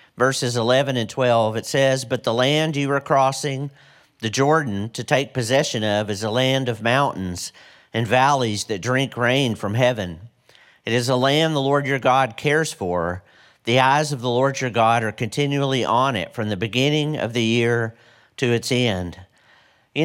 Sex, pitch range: male, 120-145 Hz